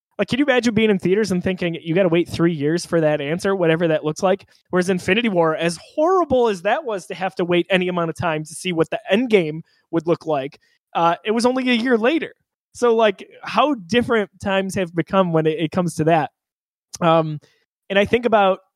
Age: 20-39